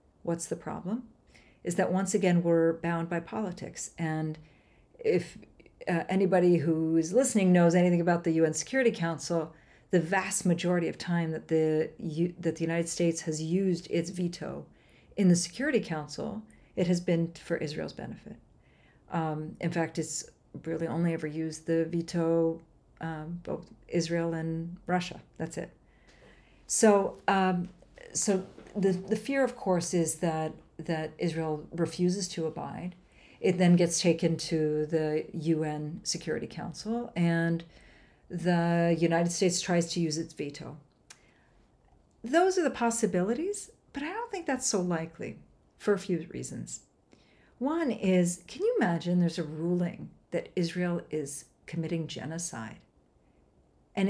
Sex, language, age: female, English, 40-59